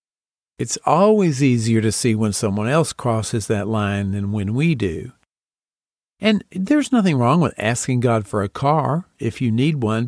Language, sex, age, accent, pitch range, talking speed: English, male, 50-69, American, 120-175 Hz, 175 wpm